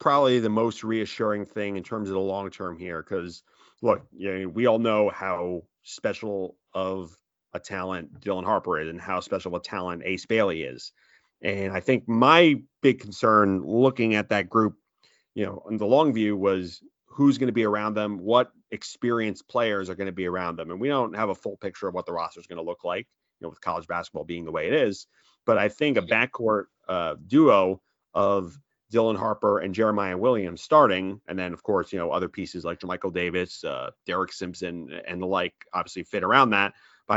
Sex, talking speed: male, 210 wpm